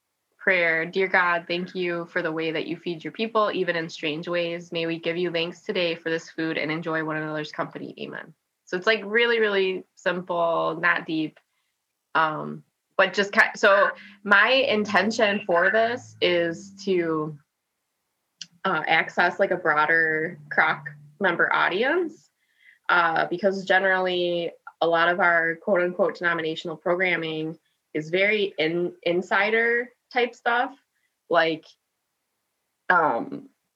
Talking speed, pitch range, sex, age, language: 140 wpm, 165-200 Hz, female, 20-39, English